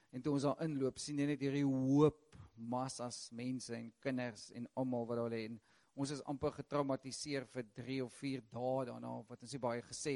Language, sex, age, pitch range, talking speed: English, male, 50-69, 125-145 Hz, 215 wpm